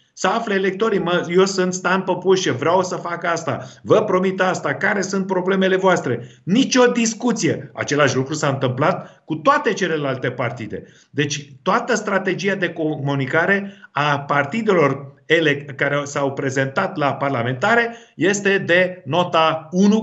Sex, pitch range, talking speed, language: male, 150-195 Hz, 140 wpm, Romanian